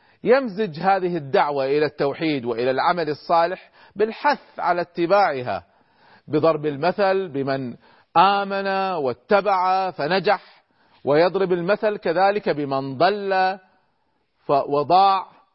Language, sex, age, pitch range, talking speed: Arabic, male, 40-59, 135-185 Hz, 90 wpm